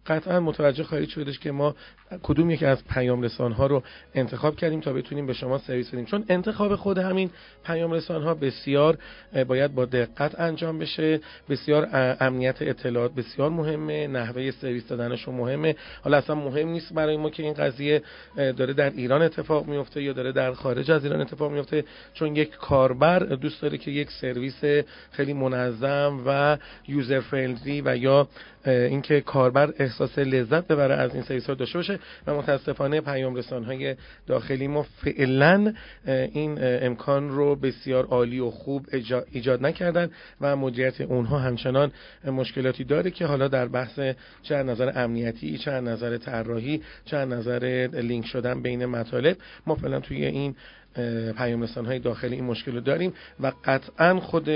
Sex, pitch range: male, 125-150 Hz